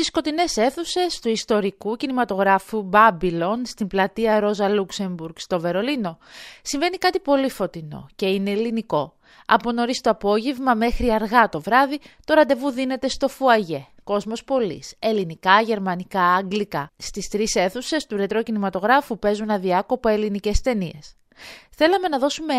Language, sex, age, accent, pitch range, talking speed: Greek, female, 30-49, native, 190-250 Hz, 135 wpm